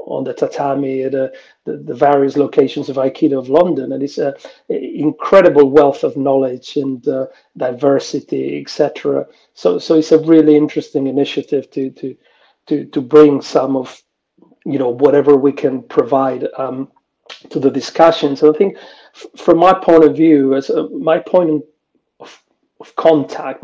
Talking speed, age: 165 wpm, 40-59